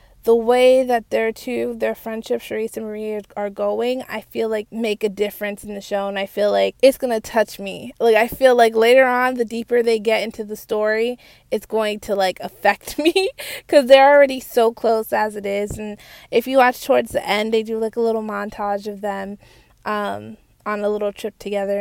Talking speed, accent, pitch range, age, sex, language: 215 wpm, American, 200-230 Hz, 20-39, female, English